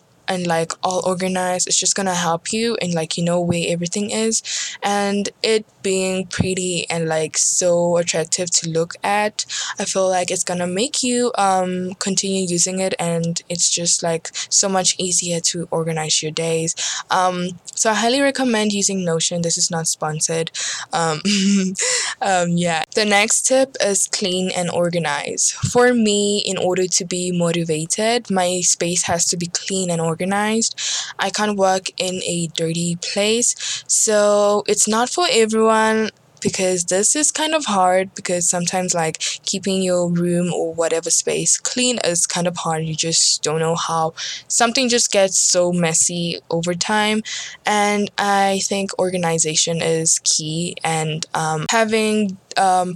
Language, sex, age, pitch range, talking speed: English, female, 10-29, 170-205 Hz, 155 wpm